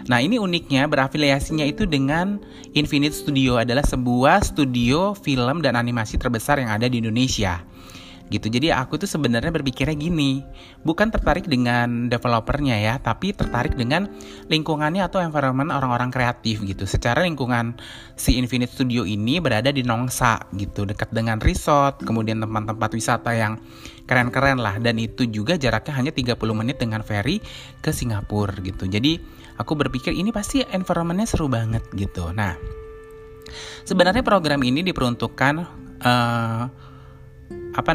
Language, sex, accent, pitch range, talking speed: Indonesian, male, native, 110-145 Hz, 140 wpm